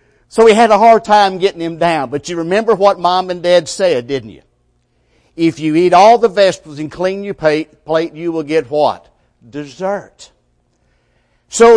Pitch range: 140-195 Hz